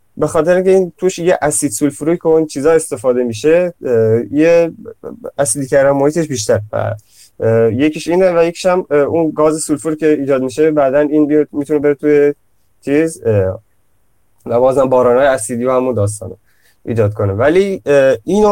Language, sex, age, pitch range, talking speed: Persian, male, 20-39, 110-155 Hz, 150 wpm